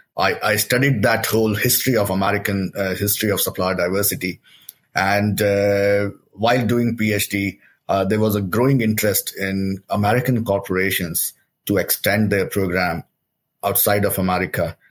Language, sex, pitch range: English, male, 95-110 Hz